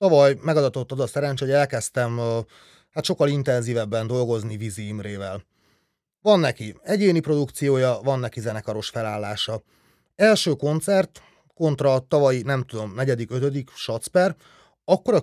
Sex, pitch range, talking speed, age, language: male, 120-150 Hz, 120 wpm, 30-49, Hungarian